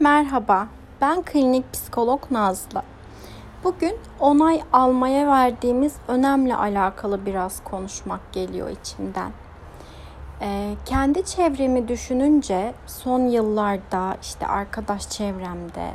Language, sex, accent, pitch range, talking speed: Turkish, female, native, 215-280 Hz, 90 wpm